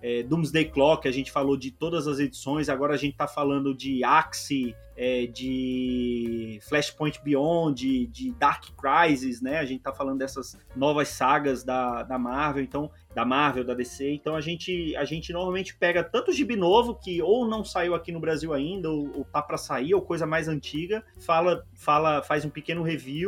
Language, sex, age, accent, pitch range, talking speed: Portuguese, male, 30-49, Brazilian, 140-175 Hz, 195 wpm